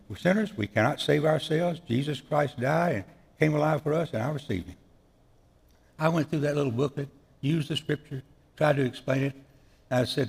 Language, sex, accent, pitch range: English, male, American, 100-155 Hz